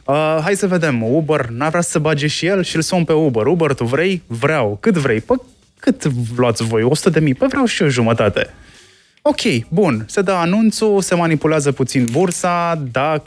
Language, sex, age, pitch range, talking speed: Romanian, male, 20-39, 115-165 Hz, 190 wpm